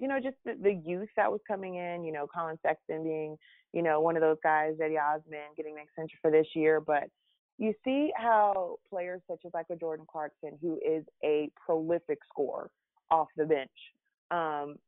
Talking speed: 195 wpm